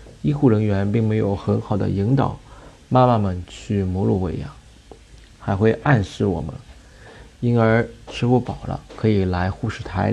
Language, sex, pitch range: Chinese, male, 100-120 Hz